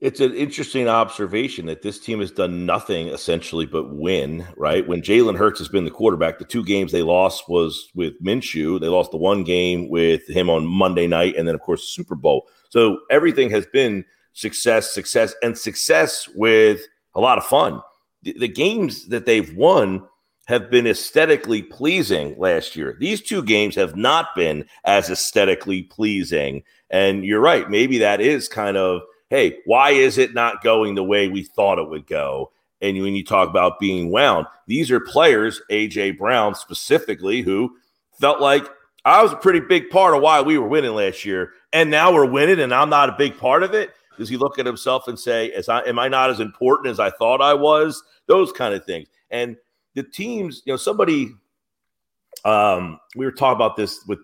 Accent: American